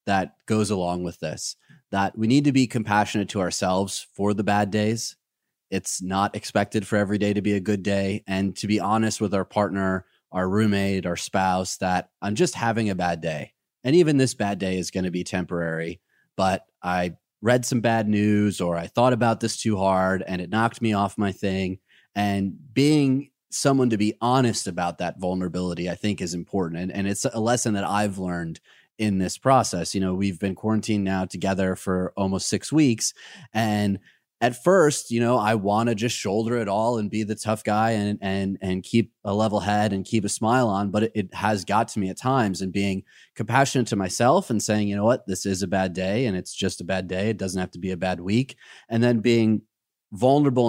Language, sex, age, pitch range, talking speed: English, male, 30-49, 95-115 Hz, 215 wpm